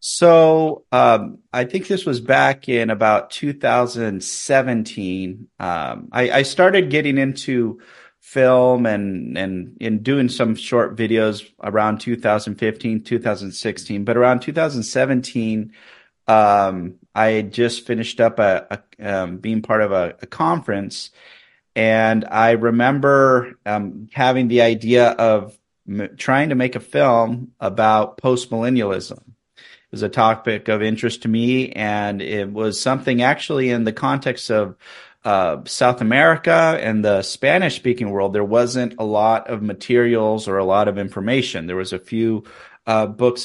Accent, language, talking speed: American, English, 140 wpm